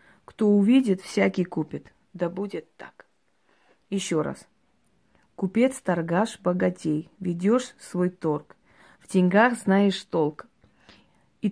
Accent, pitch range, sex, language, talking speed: native, 170-210 Hz, female, Russian, 105 wpm